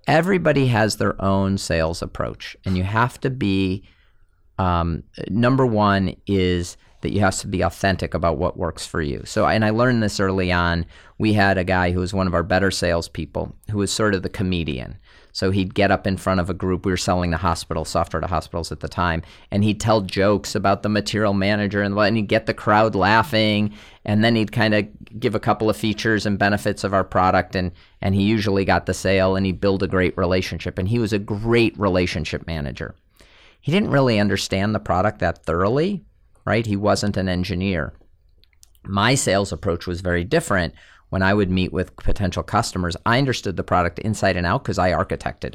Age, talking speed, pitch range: 40-59, 205 wpm, 90-115 Hz